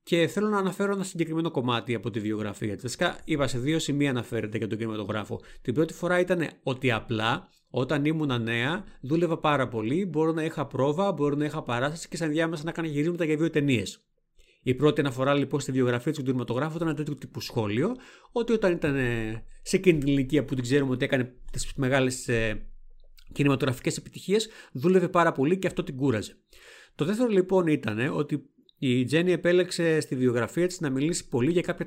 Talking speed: 190 wpm